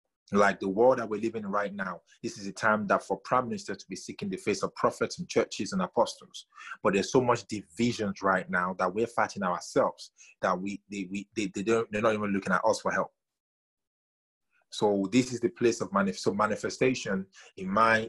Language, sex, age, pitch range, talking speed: English, male, 30-49, 95-120 Hz, 215 wpm